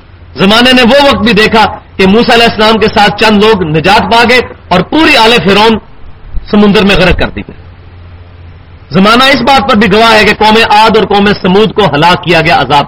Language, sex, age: English, male, 40-59